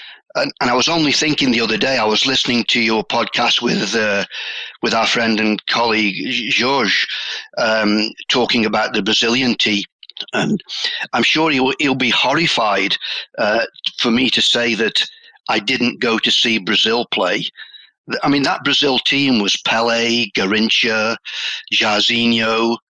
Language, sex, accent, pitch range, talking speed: English, male, British, 110-135 Hz, 150 wpm